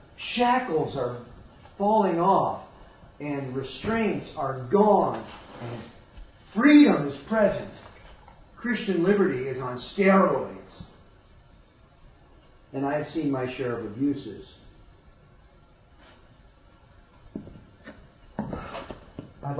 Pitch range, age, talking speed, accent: 120-180 Hz, 50-69, 80 wpm, American